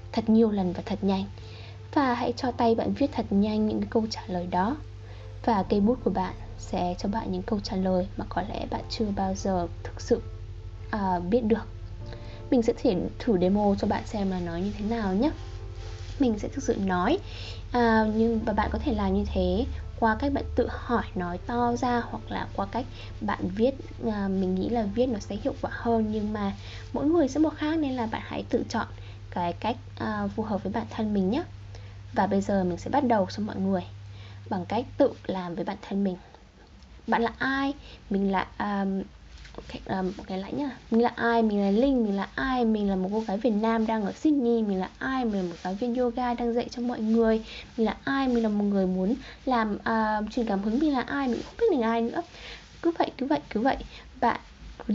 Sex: female